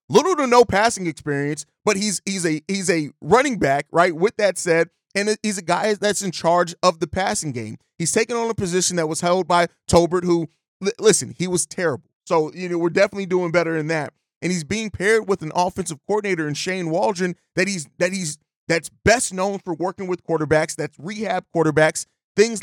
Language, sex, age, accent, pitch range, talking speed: English, male, 30-49, American, 155-190 Hz, 205 wpm